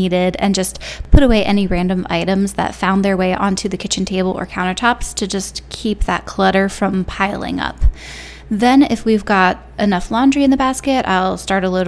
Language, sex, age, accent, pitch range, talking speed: English, female, 10-29, American, 185-225 Hz, 190 wpm